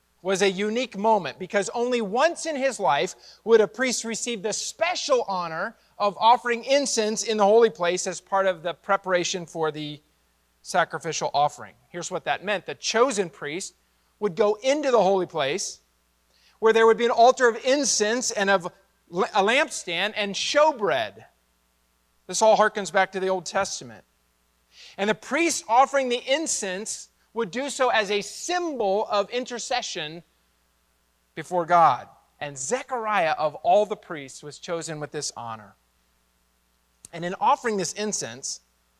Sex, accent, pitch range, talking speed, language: male, American, 155-235 Hz, 155 wpm, English